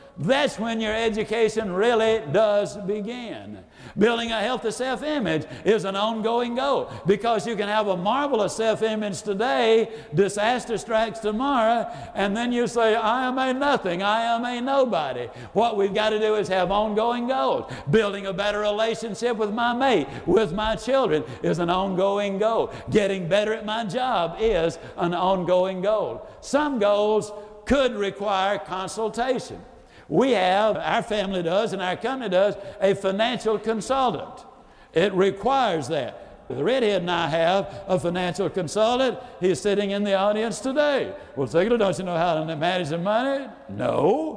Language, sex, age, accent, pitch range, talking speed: English, male, 60-79, American, 195-235 Hz, 155 wpm